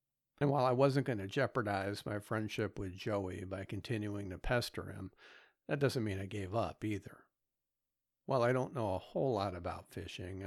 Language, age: English, 50-69